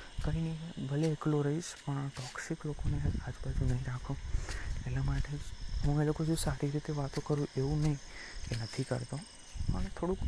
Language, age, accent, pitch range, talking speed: Gujarati, 20-39, native, 125-150 Hz, 125 wpm